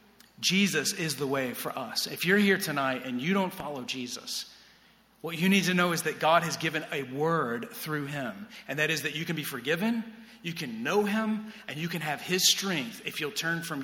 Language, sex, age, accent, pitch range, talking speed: English, male, 40-59, American, 155-215 Hz, 220 wpm